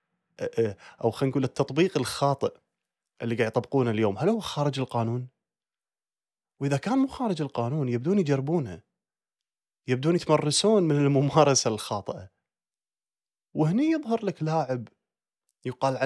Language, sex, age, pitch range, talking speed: Arabic, male, 30-49, 120-160 Hz, 105 wpm